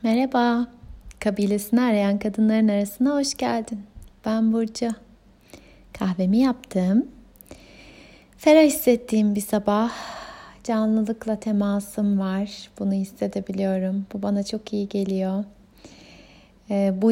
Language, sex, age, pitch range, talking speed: Turkish, female, 30-49, 190-220 Hz, 90 wpm